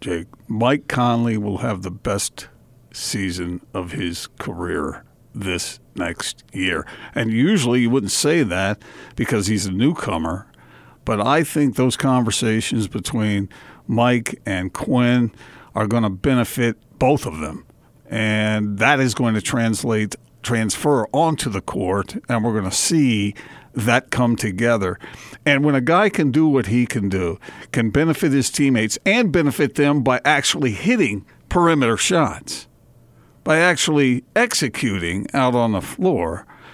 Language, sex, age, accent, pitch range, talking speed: English, male, 50-69, American, 105-135 Hz, 140 wpm